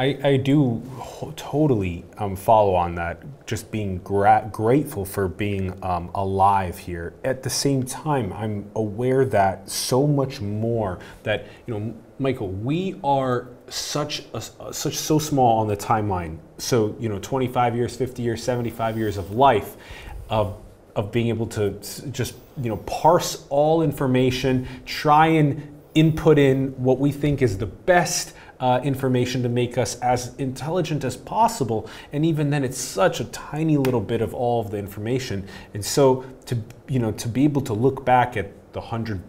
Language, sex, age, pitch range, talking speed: English, male, 30-49, 105-135 Hz, 170 wpm